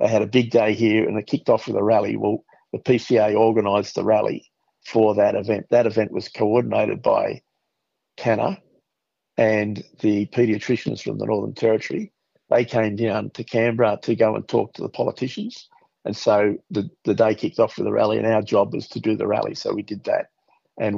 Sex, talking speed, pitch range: male, 200 wpm, 105-120 Hz